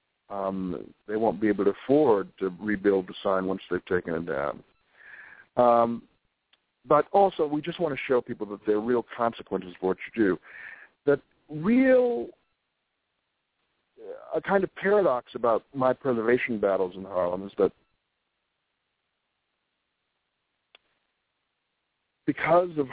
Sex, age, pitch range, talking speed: male, 60-79, 100-145 Hz, 130 wpm